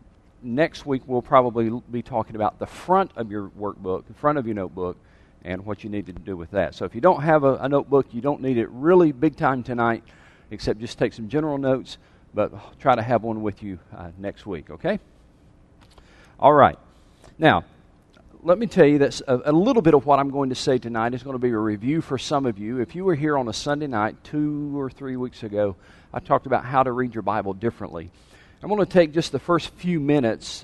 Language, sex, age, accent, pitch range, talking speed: English, male, 40-59, American, 110-145 Hz, 230 wpm